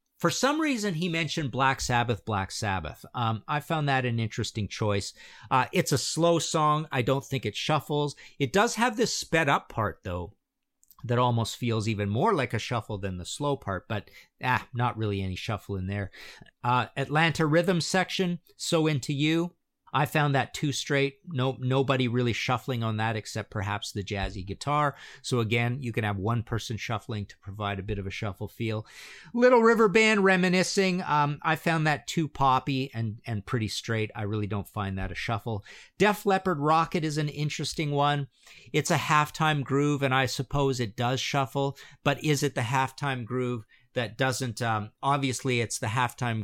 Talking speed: 185 wpm